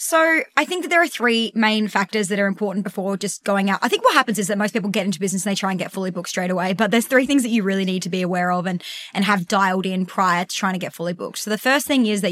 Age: 20-39